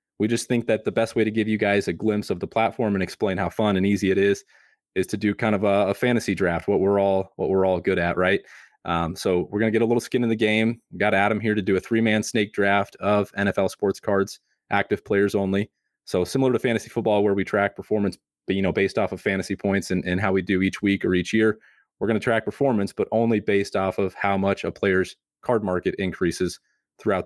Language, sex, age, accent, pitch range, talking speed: English, male, 30-49, American, 100-110 Hz, 255 wpm